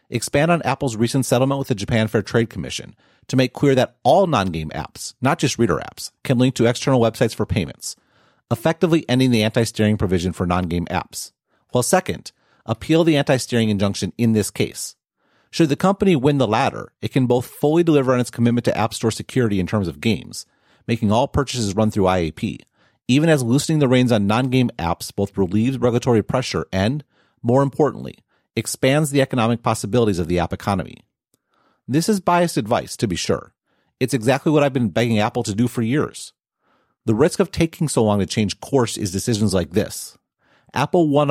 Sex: male